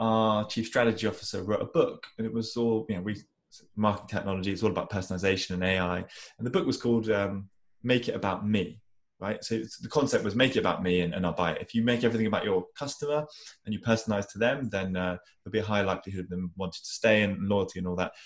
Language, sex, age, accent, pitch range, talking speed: English, male, 20-39, British, 100-125 Hz, 245 wpm